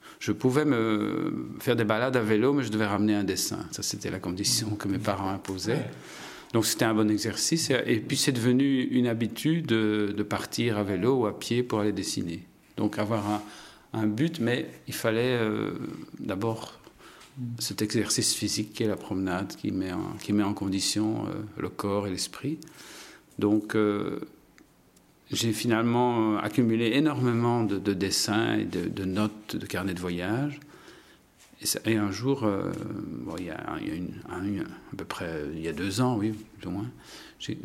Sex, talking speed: male, 155 wpm